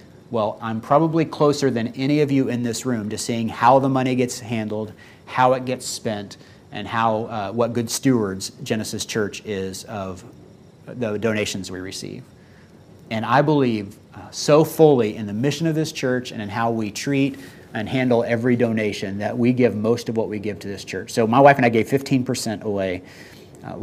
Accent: American